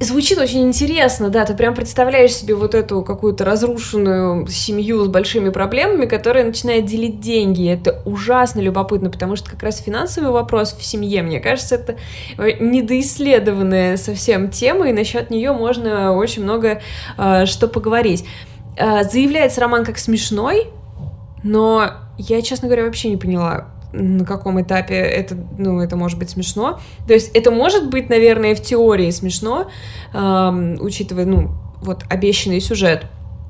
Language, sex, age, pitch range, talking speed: Russian, female, 20-39, 195-240 Hz, 145 wpm